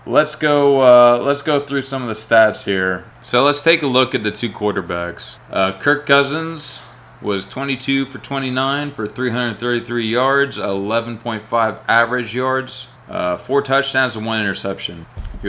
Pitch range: 105-130 Hz